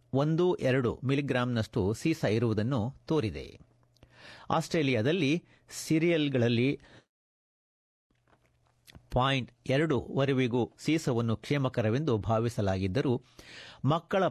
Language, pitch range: Kannada, 115-150 Hz